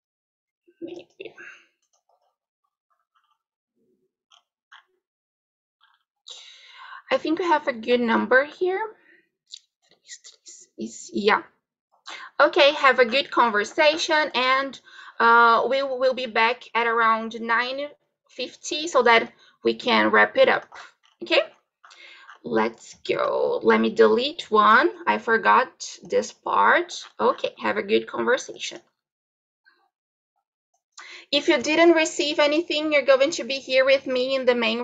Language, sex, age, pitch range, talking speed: Portuguese, female, 20-39, 230-355 Hz, 105 wpm